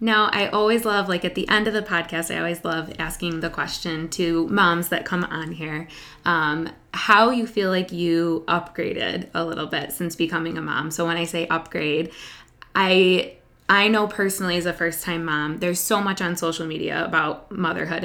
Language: English